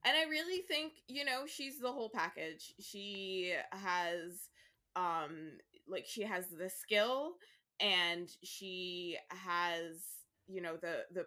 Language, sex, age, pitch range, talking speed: English, female, 20-39, 175-235 Hz, 135 wpm